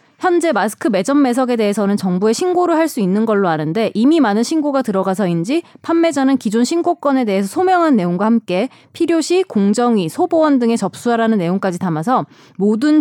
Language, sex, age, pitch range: Korean, female, 20-39, 195-300 Hz